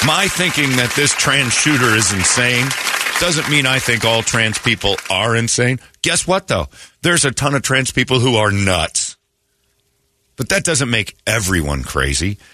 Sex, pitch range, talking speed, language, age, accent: male, 95-155 Hz, 165 wpm, English, 50-69, American